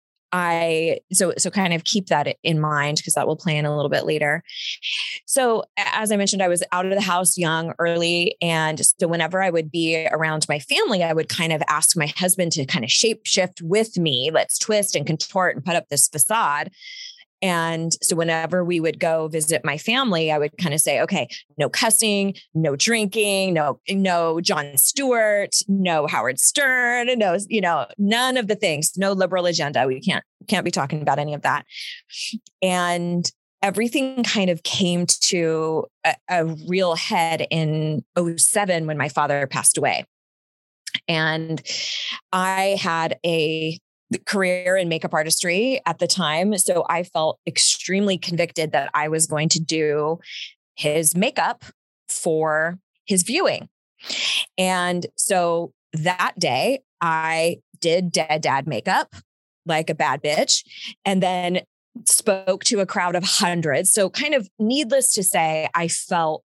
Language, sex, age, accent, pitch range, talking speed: English, female, 20-39, American, 160-195 Hz, 165 wpm